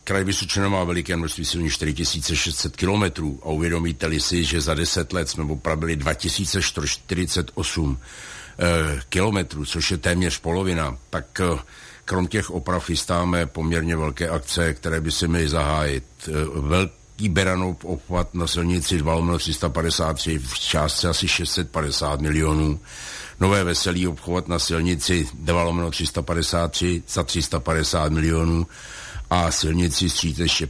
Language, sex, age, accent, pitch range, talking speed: Czech, male, 60-79, native, 80-90 Hz, 115 wpm